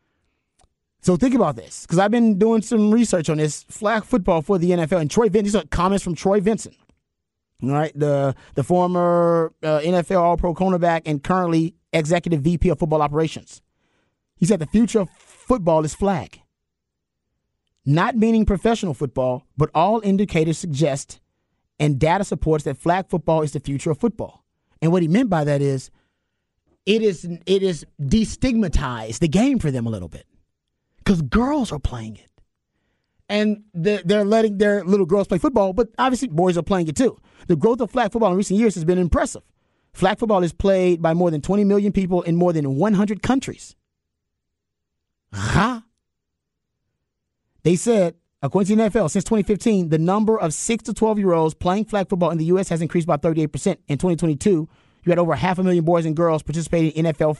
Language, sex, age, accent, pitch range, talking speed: English, male, 30-49, American, 155-205 Hz, 180 wpm